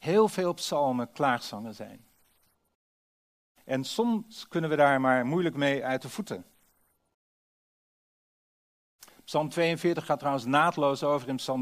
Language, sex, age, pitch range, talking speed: Dutch, male, 50-69, 140-185 Hz, 125 wpm